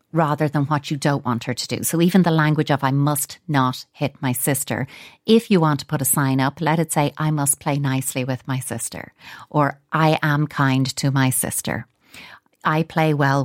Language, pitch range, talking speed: English, 135-160 Hz, 215 wpm